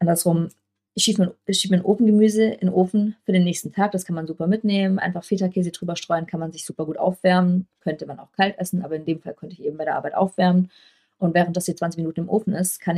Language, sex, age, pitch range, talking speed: German, female, 30-49, 165-190 Hz, 255 wpm